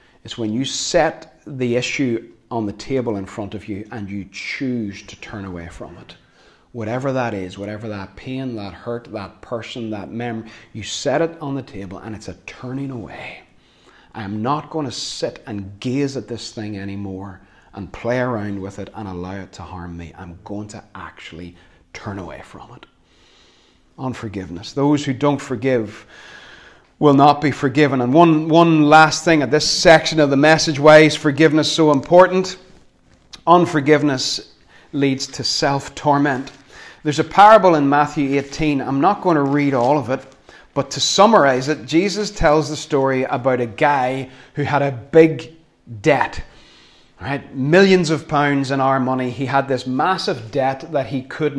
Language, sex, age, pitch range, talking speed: English, male, 30-49, 110-150 Hz, 170 wpm